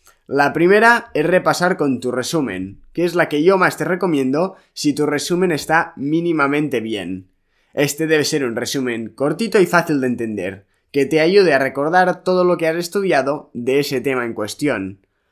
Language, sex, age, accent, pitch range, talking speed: Spanish, male, 20-39, Spanish, 130-175 Hz, 180 wpm